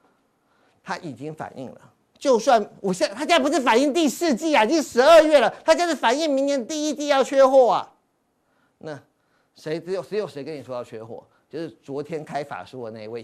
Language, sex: Chinese, male